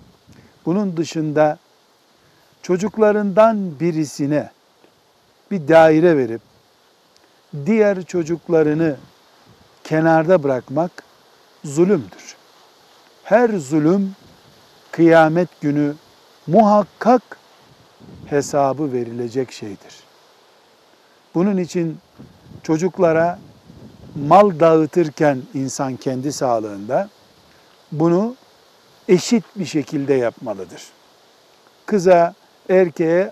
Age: 60-79